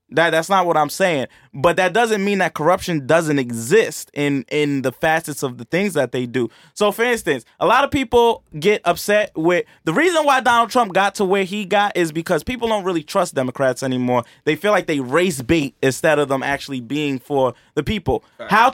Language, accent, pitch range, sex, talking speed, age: English, American, 140-200 Hz, male, 215 wpm, 20-39